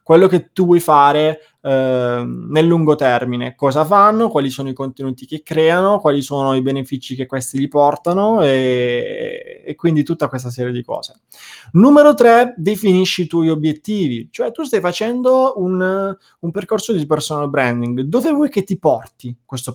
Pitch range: 130-180 Hz